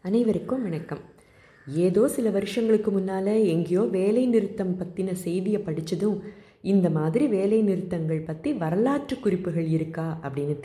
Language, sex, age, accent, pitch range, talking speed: Tamil, female, 20-39, native, 160-220 Hz, 120 wpm